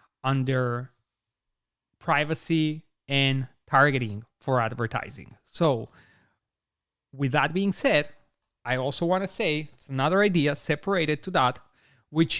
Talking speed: 110 wpm